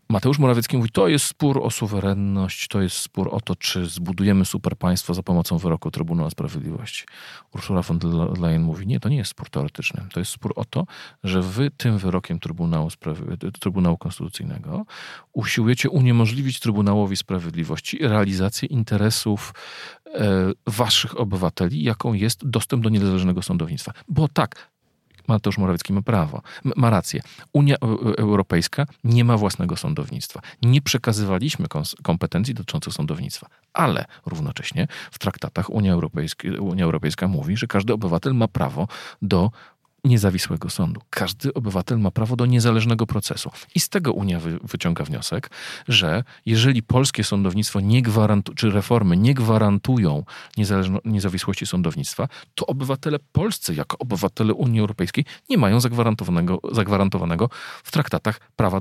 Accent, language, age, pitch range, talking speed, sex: native, Polish, 40-59, 95-125 Hz, 140 wpm, male